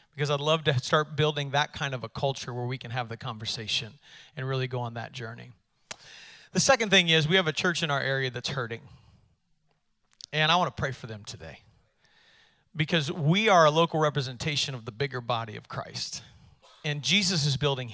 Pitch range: 125-155 Hz